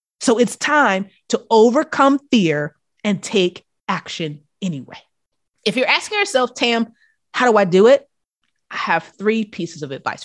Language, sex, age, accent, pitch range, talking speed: English, female, 30-49, American, 185-260 Hz, 150 wpm